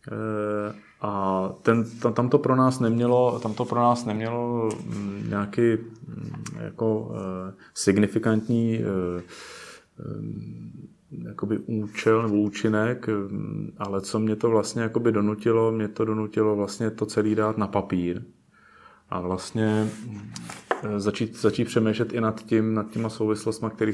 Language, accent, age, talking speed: Czech, native, 30-49, 115 wpm